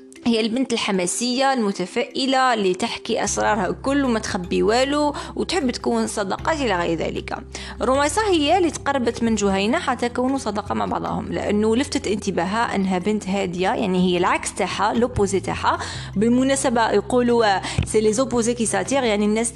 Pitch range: 195-255 Hz